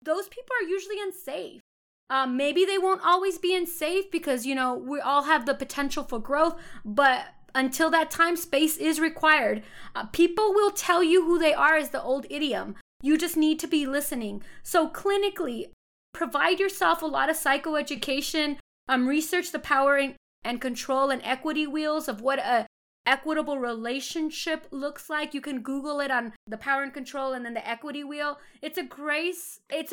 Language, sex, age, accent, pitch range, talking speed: English, female, 20-39, American, 260-315 Hz, 180 wpm